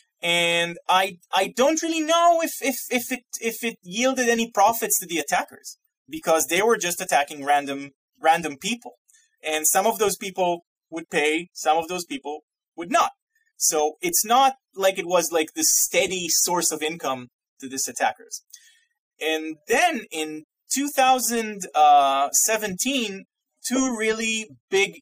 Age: 30-49